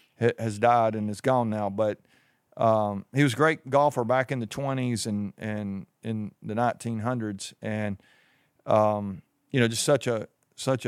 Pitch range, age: 115-140 Hz, 40-59